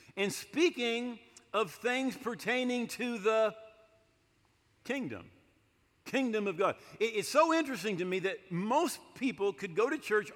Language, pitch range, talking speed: English, 155-235 Hz, 135 wpm